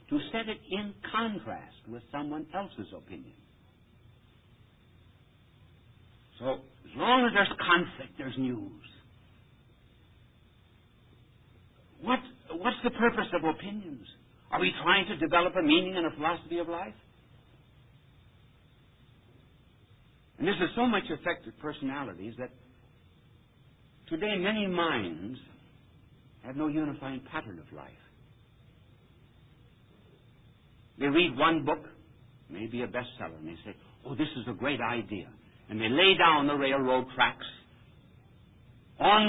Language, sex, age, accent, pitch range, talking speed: English, male, 60-79, American, 120-170 Hz, 115 wpm